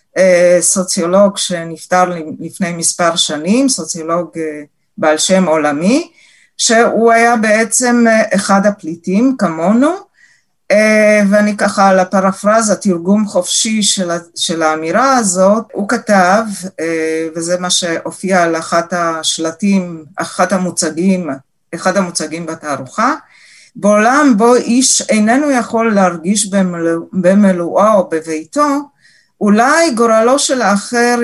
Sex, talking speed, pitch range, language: female, 100 wpm, 175-230 Hz, Hebrew